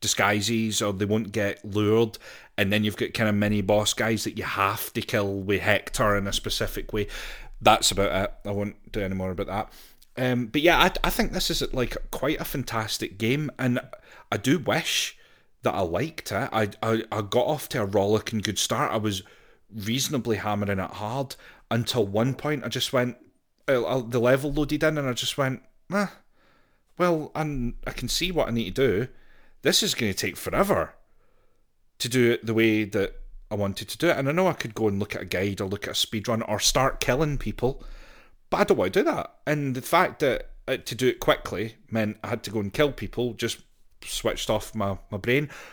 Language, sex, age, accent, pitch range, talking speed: English, male, 30-49, British, 105-125 Hz, 215 wpm